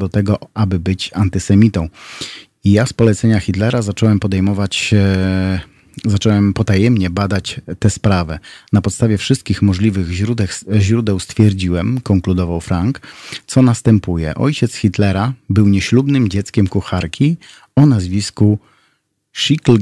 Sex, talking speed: male, 115 wpm